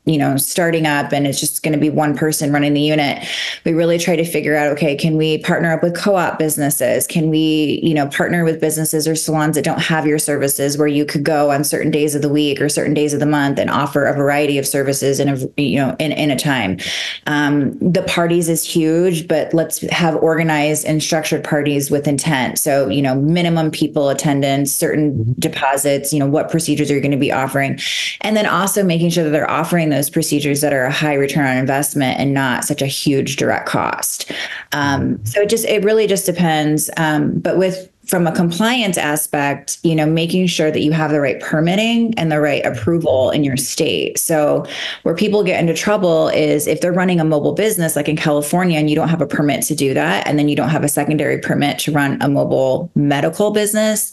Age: 20-39